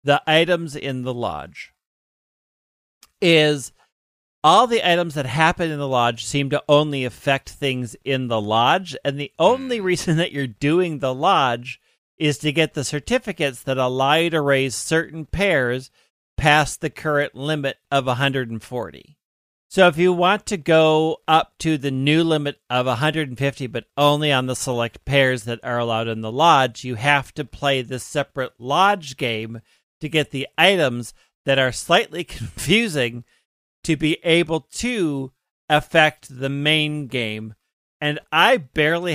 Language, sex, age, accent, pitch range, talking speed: English, male, 40-59, American, 125-155 Hz, 155 wpm